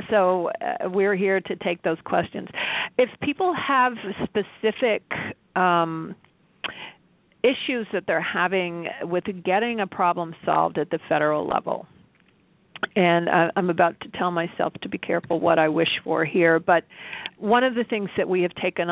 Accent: American